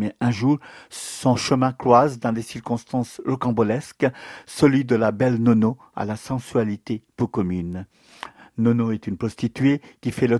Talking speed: 155 wpm